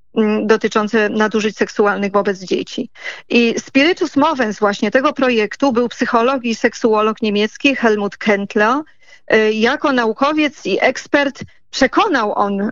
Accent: native